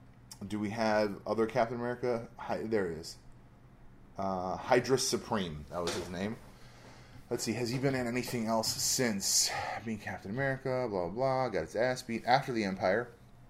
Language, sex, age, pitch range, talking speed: English, male, 20-39, 95-120 Hz, 175 wpm